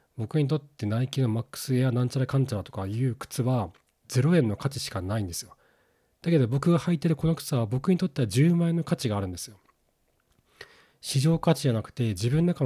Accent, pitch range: native, 110-150 Hz